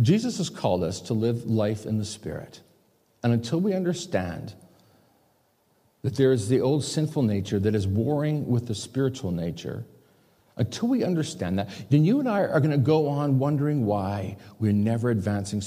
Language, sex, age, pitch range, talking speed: English, male, 50-69, 105-170 Hz, 175 wpm